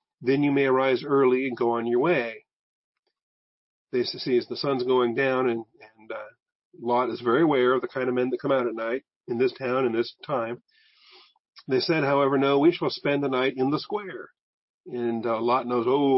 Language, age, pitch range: English, 40-59, 120-160 Hz